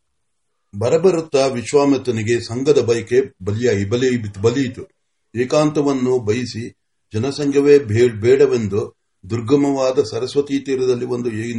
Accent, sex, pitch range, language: native, male, 120-145 Hz, Marathi